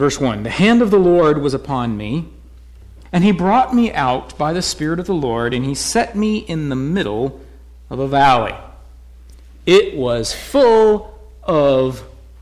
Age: 50-69